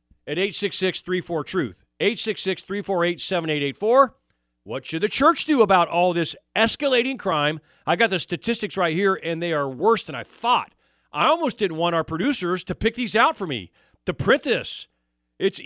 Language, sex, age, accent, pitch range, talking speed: English, male, 40-59, American, 160-225 Hz, 160 wpm